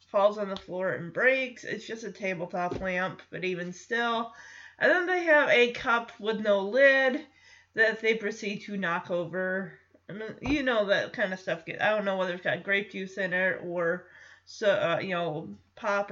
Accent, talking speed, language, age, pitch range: American, 200 wpm, English, 20-39, 195-285 Hz